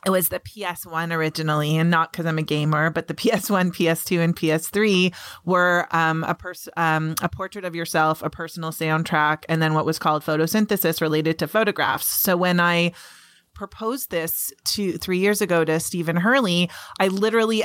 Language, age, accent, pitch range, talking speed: English, 30-49, American, 165-195 Hz, 170 wpm